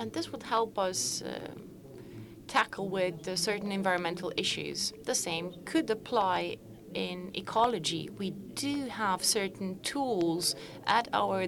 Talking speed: 125 wpm